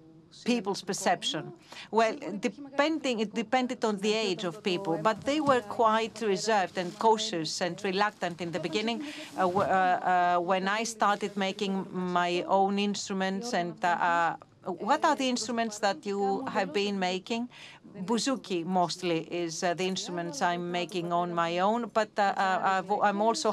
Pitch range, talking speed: 175-215 Hz, 155 wpm